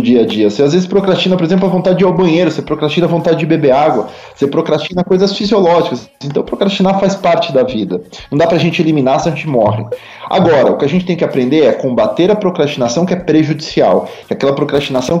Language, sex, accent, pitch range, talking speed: Portuguese, male, Brazilian, 135-185 Hz, 235 wpm